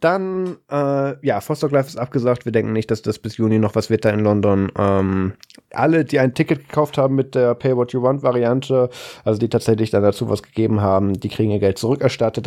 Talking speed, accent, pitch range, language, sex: 205 wpm, German, 100-120 Hz, German, male